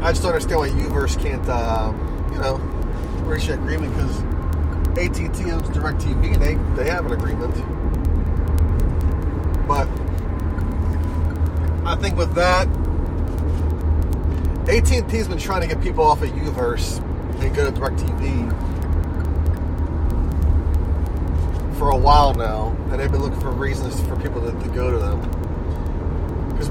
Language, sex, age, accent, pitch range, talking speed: English, male, 30-49, American, 75-85 Hz, 135 wpm